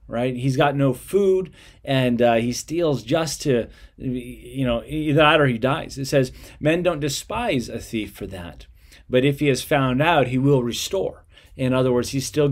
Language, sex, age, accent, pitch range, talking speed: English, male, 30-49, American, 115-150 Hz, 195 wpm